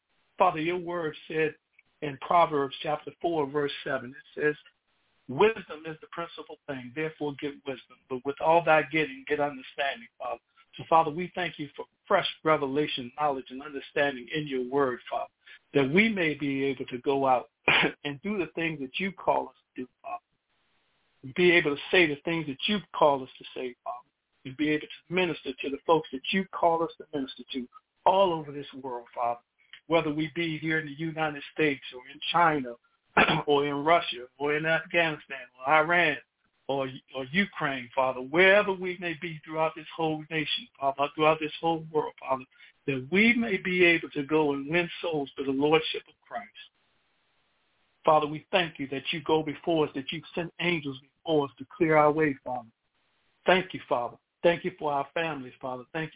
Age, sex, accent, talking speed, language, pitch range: 50-69, male, American, 190 wpm, English, 140-165 Hz